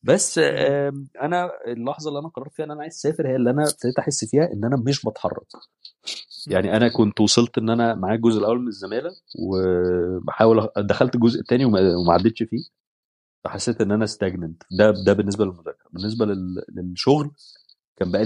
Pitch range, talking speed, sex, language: 105-140 Hz, 170 wpm, male, Arabic